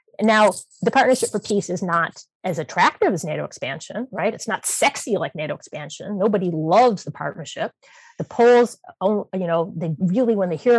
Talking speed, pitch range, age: 180 wpm, 170-205 Hz, 30-49